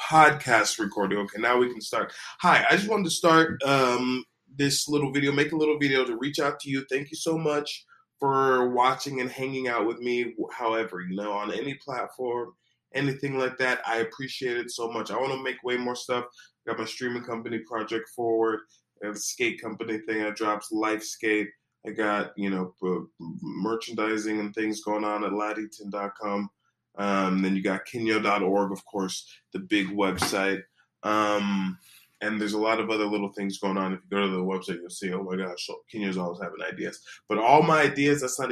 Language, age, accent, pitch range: English, 20-39, American, 100-130 Hz